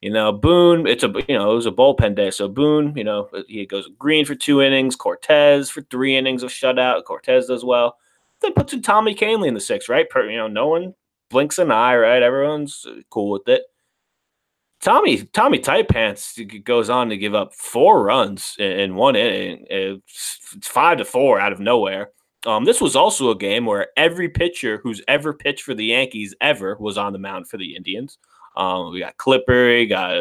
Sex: male